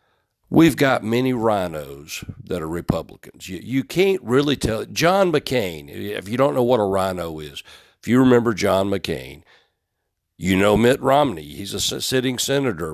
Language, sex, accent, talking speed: English, male, American, 160 wpm